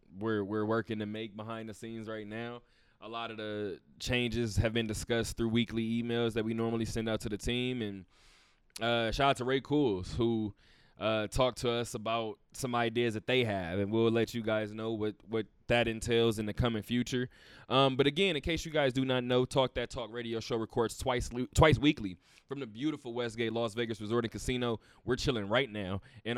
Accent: American